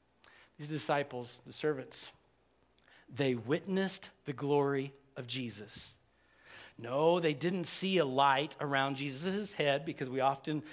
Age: 40-59